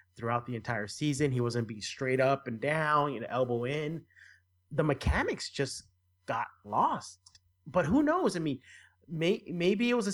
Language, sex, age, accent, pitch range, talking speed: English, male, 30-49, American, 115-155 Hz, 180 wpm